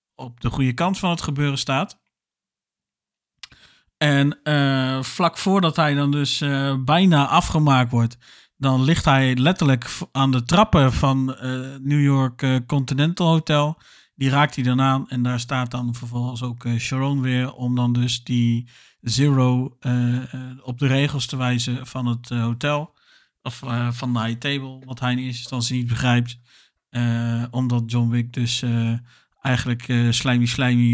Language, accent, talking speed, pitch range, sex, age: Dutch, Dutch, 165 wpm, 120-145 Hz, male, 50-69